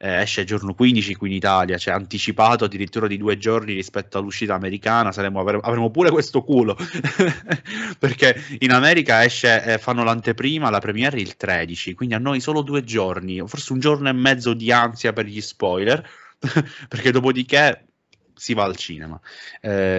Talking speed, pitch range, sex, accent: 170 wpm, 95-120 Hz, male, native